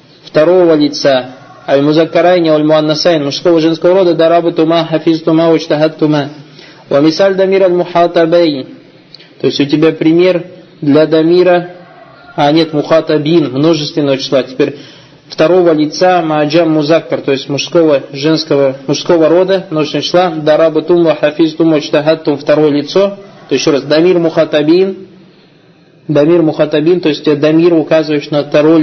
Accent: native